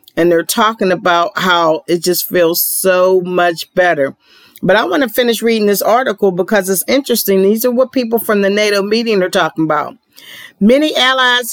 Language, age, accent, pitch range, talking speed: English, 50-69, American, 180-225 Hz, 180 wpm